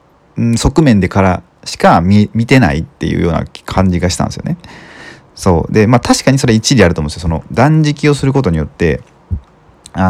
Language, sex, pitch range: Japanese, male, 90-130 Hz